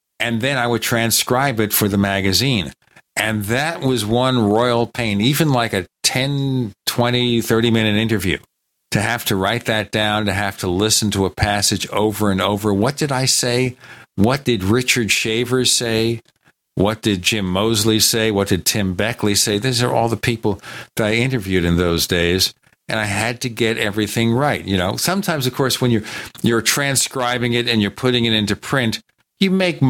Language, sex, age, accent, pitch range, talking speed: English, male, 50-69, American, 100-125 Hz, 185 wpm